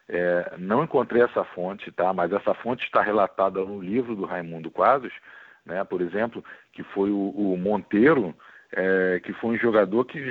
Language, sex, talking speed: Portuguese, male, 150 wpm